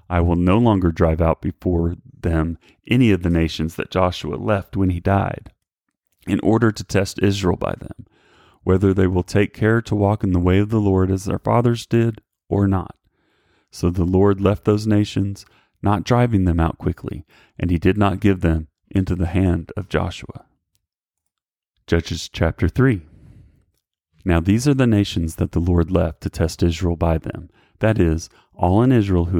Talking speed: 180 wpm